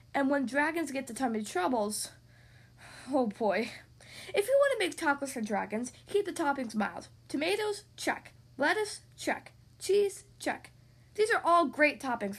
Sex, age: female, 10-29